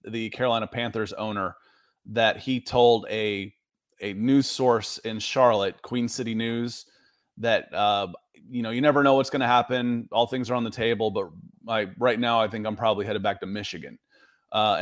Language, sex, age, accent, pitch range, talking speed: English, male, 30-49, American, 110-130 Hz, 185 wpm